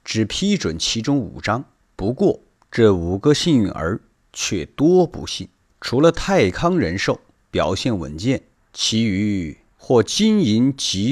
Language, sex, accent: Chinese, male, native